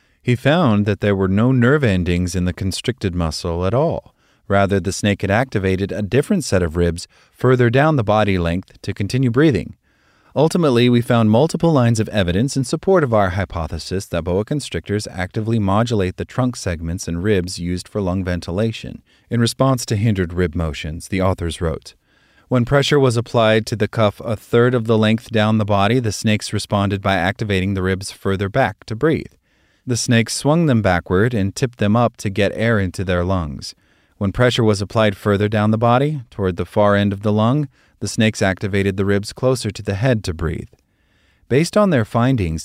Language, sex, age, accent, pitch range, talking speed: English, male, 30-49, American, 95-120 Hz, 195 wpm